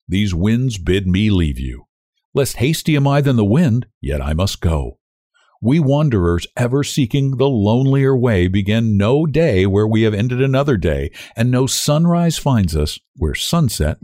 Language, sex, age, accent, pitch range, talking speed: English, male, 60-79, American, 85-120 Hz, 170 wpm